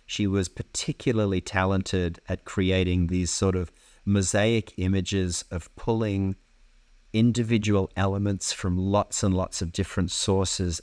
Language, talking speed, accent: English, 120 wpm, Australian